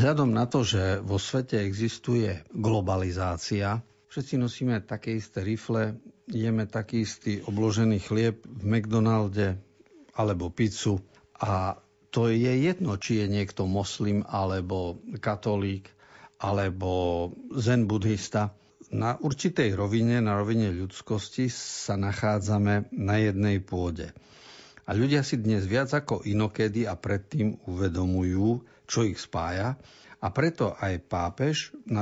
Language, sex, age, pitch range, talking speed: Slovak, male, 50-69, 100-120 Hz, 120 wpm